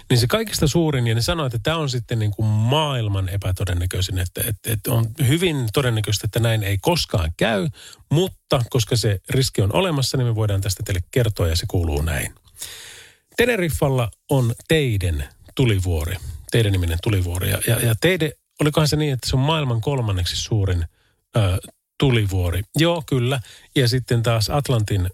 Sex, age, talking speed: male, 40-59, 160 wpm